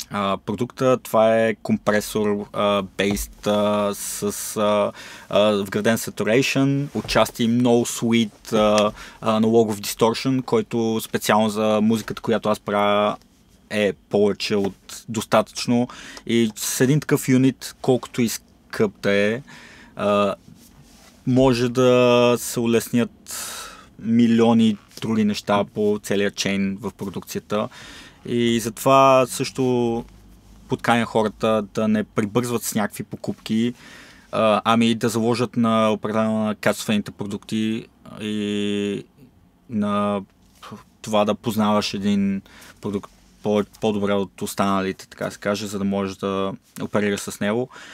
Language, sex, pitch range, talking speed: Bulgarian, male, 105-125 Hz, 115 wpm